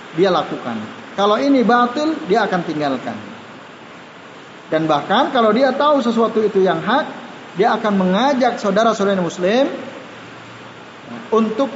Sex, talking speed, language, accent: male, 115 wpm, Indonesian, native